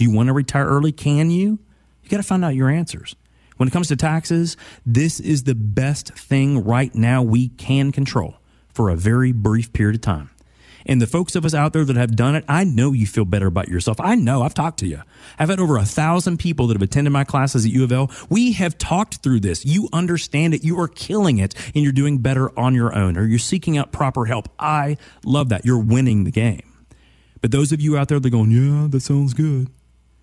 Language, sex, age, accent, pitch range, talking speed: English, male, 30-49, American, 105-150 Hz, 235 wpm